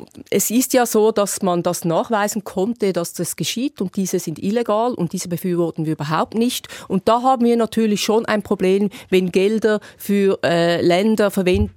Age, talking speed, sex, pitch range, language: 30-49, 185 wpm, female, 185-235 Hz, German